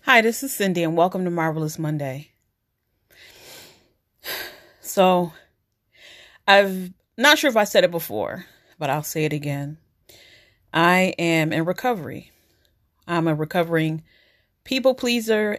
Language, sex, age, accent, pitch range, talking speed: English, female, 30-49, American, 150-185 Hz, 125 wpm